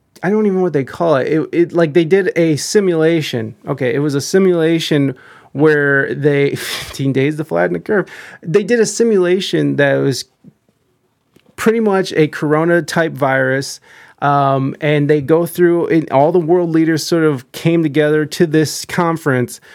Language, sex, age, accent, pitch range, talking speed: English, male, 30-49, American, 140-180 Hz, 175 wpm